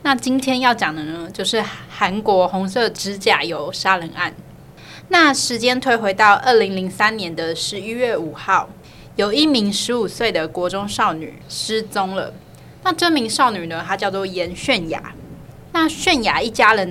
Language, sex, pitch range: Chinese, female, 185-245 Hz